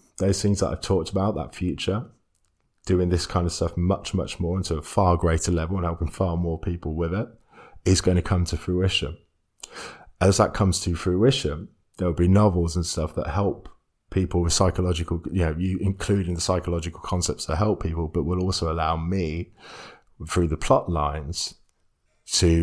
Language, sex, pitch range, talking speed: English, male, 80-95 Hz, 185 wpm